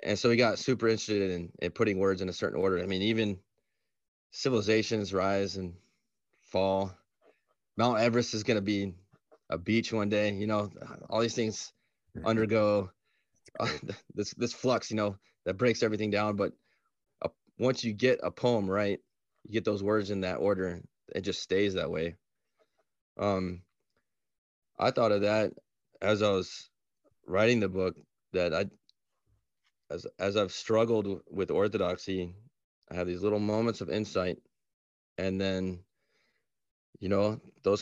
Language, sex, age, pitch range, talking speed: English, male, 20-39, 90-110 Hz, 155 wpm